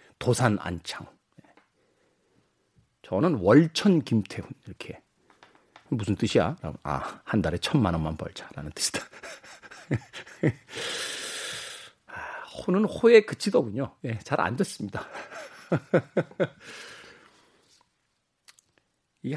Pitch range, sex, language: 115-180 Hz, male, Korean